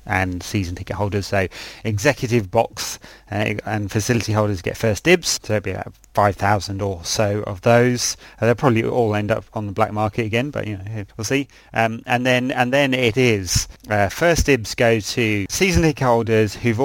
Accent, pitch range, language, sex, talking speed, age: British, 100-125 Hz, English, male, 200 wpm, 30-49